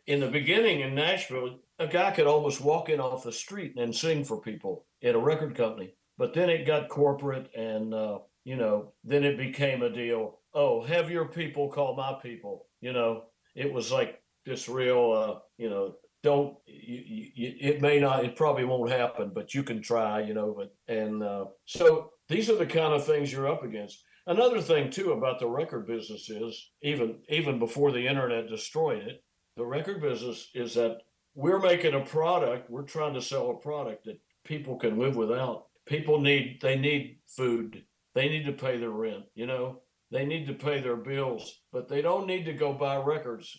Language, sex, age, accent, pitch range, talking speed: English, male, 60-79, American, 120-150 Hz, 200 wpm